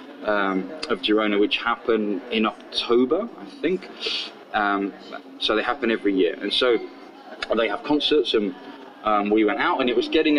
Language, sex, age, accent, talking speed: English, male, 20-39, British, 170 wpm